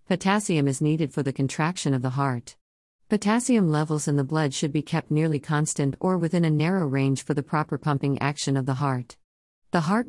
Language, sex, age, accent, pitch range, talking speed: English, female, 50-69, American, 130-155 Hz, 200 wpm